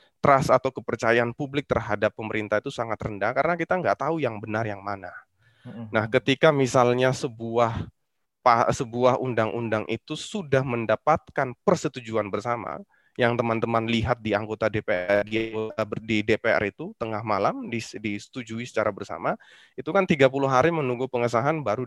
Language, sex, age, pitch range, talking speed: Indonesian, male, 20-39, 110-130 Hz, 130 wpm